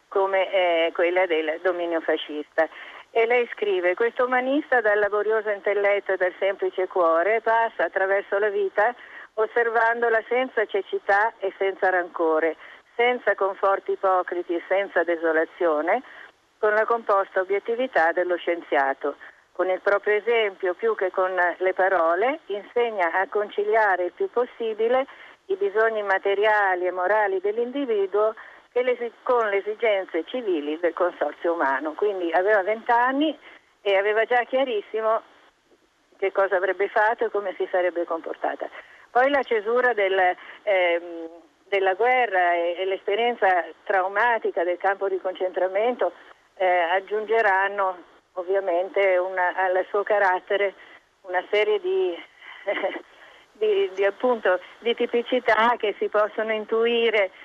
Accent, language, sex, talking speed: native, Italian, female, 125 wpm